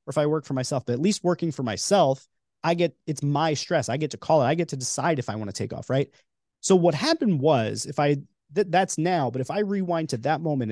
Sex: male